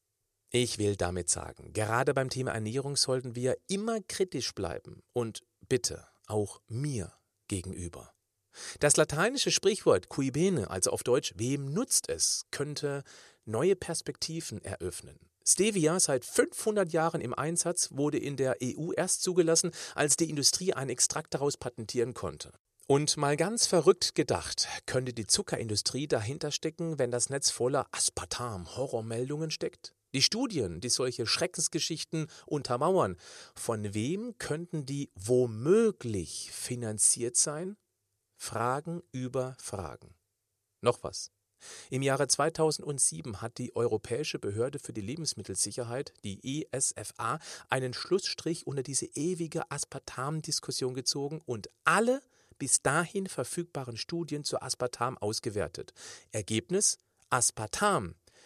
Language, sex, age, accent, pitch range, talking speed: German, male, 40-59, German, 115-160 Hz, 120 wpm